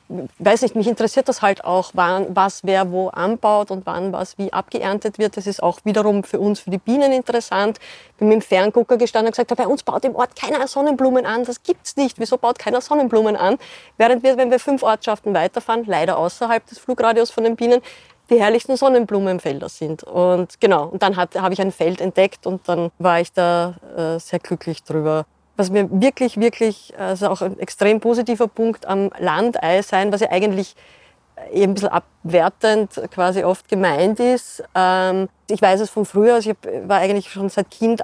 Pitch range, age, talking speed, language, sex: 190-235 Hz, 30-49, 195 wpm, German, female